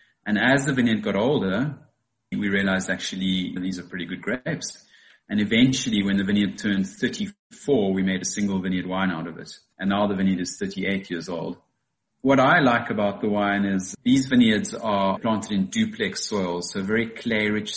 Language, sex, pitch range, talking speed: English, male, 95-115 Hz, 185 wpm